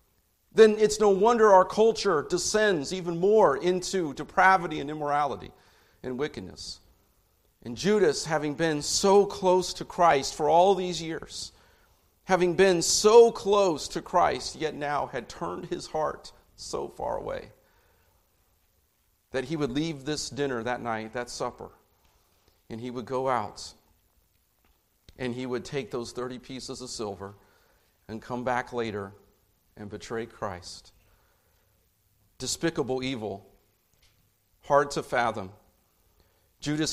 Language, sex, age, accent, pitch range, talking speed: English, male, 50-69, American, 100-155 Hz, 130 wpm